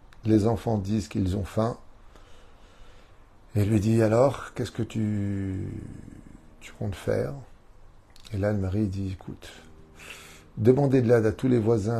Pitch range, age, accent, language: 95-115 Hz, 50-69, French, French